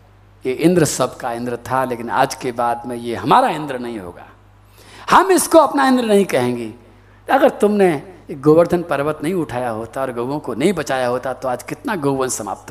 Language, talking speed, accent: Hindi, 190 wpm, native